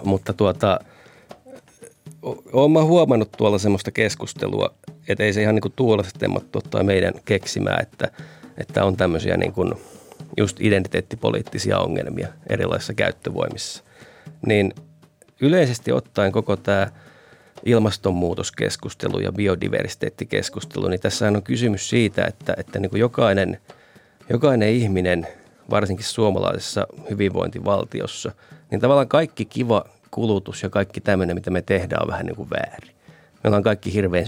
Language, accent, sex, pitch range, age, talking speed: Finnish, native, male, 95-115 Hz, 30-49, 125 wpm